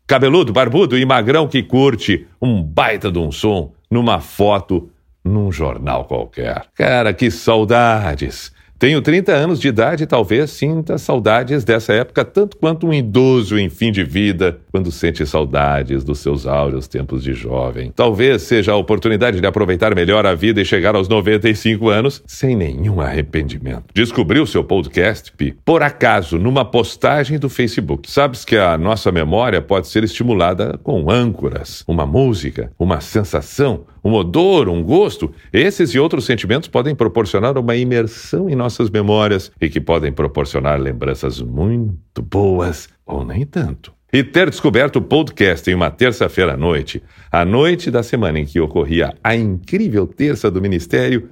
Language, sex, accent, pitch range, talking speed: Portuguese, male, Brazilian, 80-125 Hz, 160 wpm